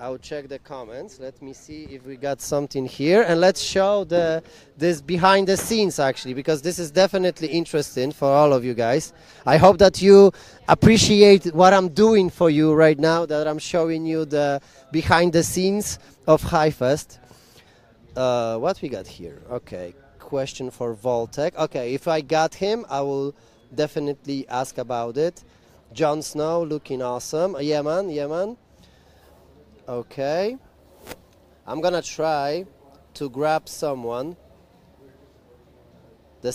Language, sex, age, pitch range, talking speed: English, male, 30-49, 135-180 Hz, 145 wpm